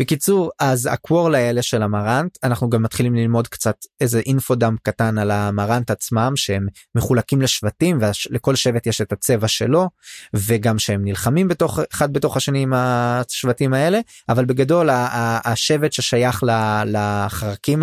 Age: 20-39